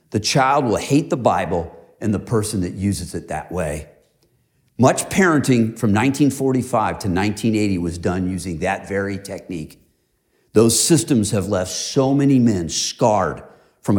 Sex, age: male, 50-69